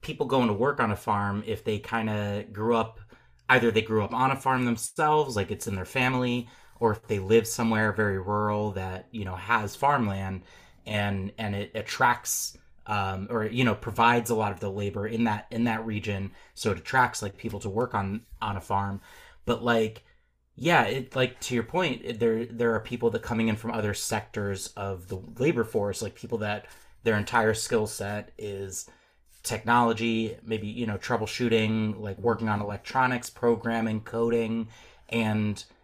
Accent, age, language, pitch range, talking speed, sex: American, 30-49, English, 100-120 Hz, 185 wpm, male